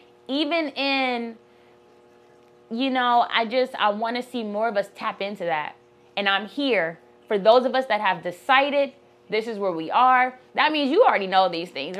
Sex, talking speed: female, 190 wpm